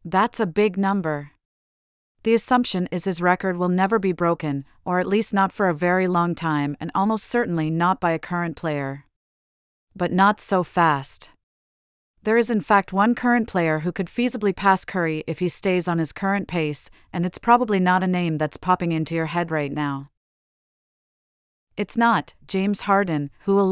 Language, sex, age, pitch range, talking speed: English, female, 40-59, 160-200 Hz, 180 wpm